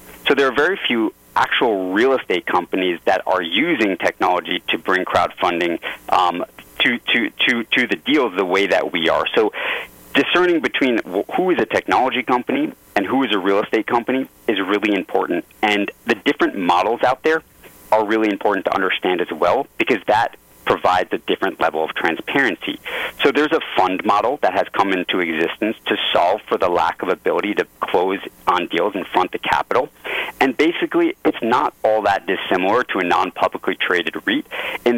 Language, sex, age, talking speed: English, male, 30-49, 180 wpm